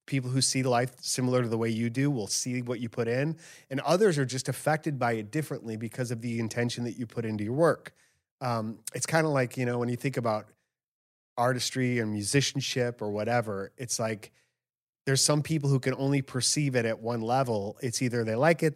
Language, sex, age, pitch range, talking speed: English, male, 30-49, 115-140 Hz, 220 wpm